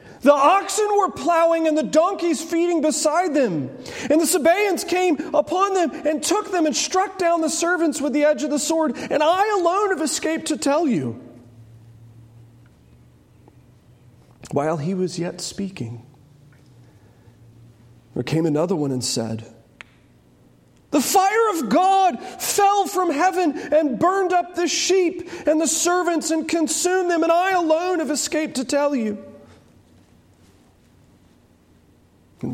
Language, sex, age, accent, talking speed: English, male, 40-59, American, 140 wpm